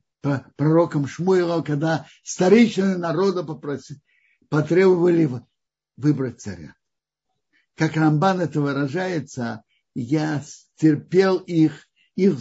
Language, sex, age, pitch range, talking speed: Russian, male, 60-79, 135-170 Hz, 75 wpm